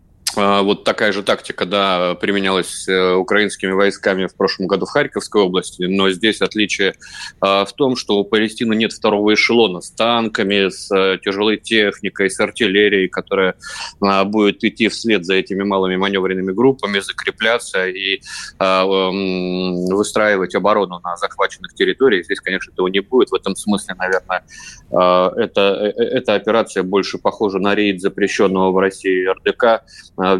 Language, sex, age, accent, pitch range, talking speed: Russian, male, 20-39, native, 95-105 Hz, 140 wpm